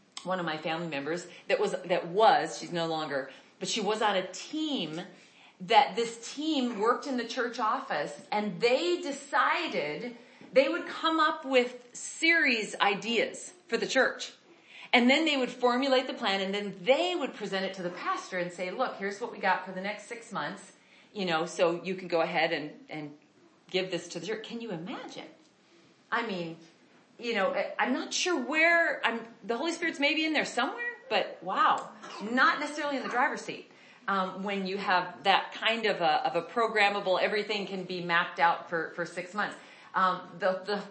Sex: female